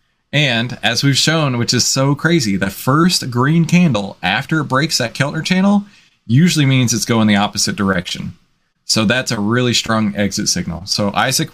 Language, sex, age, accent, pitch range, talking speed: English, male, 20-39, American, 105-150 Hz, 175 wpm